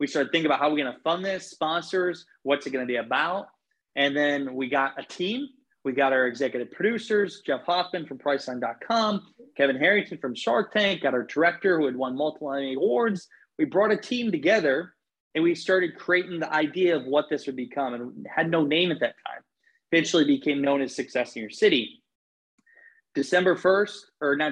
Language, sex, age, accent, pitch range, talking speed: English, male, 20-39, American, 140-170 Hz, 195 wpm